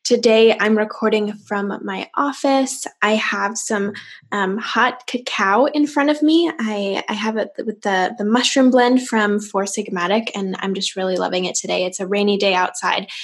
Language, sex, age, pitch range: English, female, 10-29, 205-245 Hz